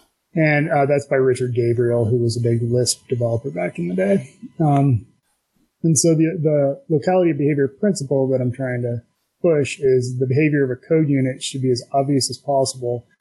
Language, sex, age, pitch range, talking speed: English, male, 20-39, 125-150 Hz, 190 wpm